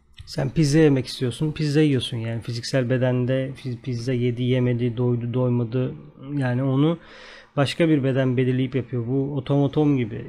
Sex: male